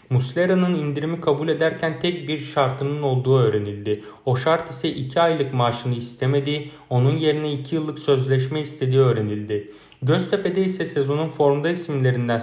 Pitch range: 125-155 Hz